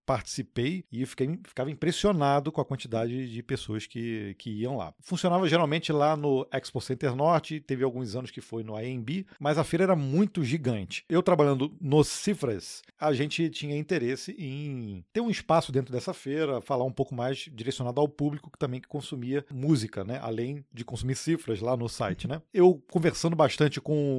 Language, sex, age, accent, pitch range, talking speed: Portuguese, male, 40-59, Brazilian, 130-160 Hz, 185 wpm